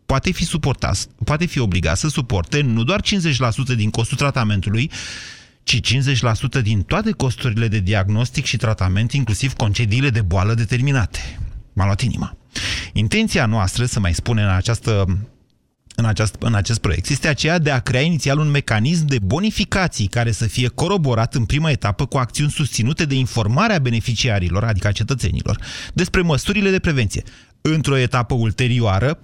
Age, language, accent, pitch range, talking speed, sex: 30-49, Romanian, native, 110-145 Hz, 150 wpm, male